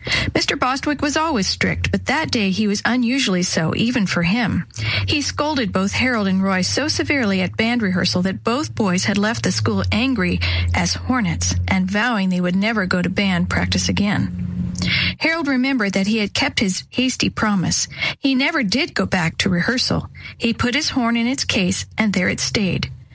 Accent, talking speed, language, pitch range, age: American, 190 wpm, English, 185-240 Hz, 40-59